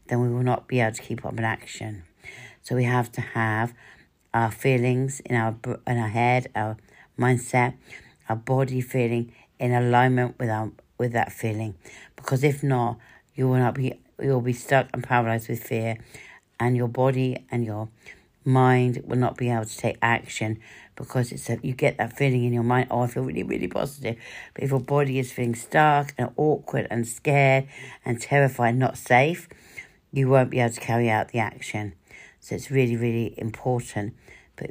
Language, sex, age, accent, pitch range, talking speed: English, female, 60-79, British, 115-130 Hz, 190 wpm